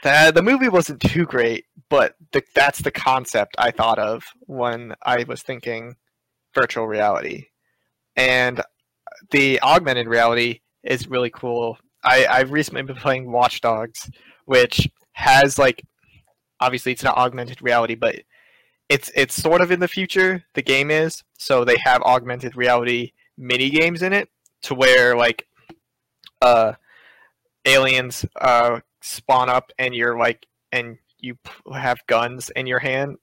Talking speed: 140 wpm